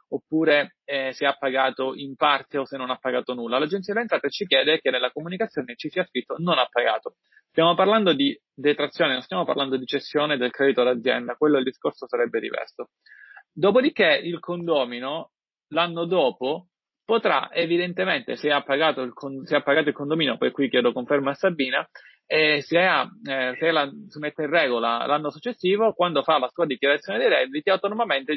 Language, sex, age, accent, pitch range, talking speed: Italian, male, 30-49, native, 135-180 Hz, 170 wpm